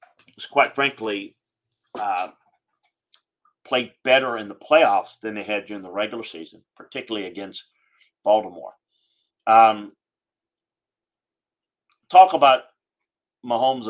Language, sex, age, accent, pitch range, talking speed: English, male, 40-59, American, 105-125 Hz, 95 wpm